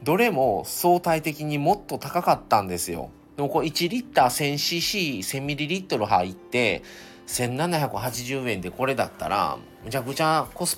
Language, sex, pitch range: Japanese, male, 95-135 Hz